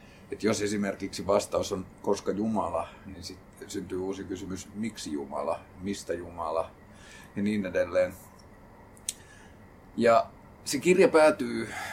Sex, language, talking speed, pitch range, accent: male, Finnish, 115 wpm, 95-115 Hz, native